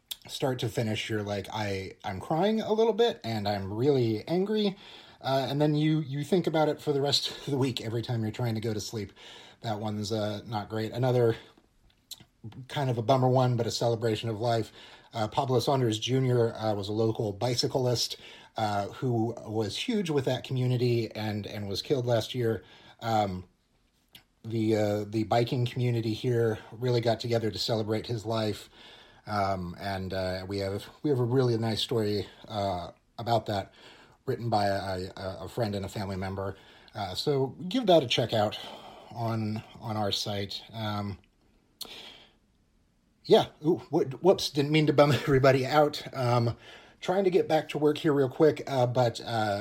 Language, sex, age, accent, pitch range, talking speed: English, male, 30-49, American, 105-135 Hz, 180 wpm